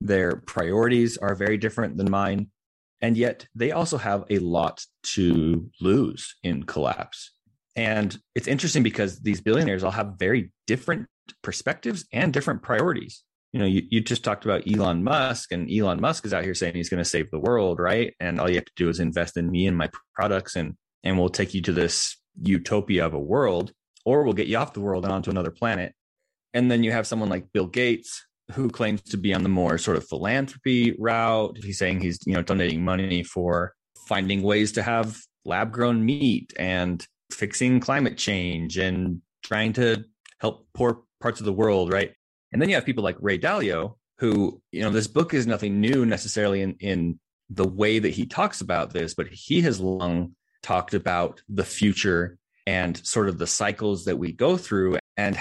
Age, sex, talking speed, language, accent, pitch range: 30-49, male, 195 wpm, English, American, 90-115 Hz